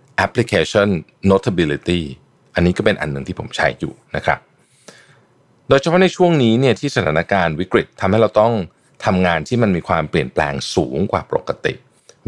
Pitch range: 85-130 Hz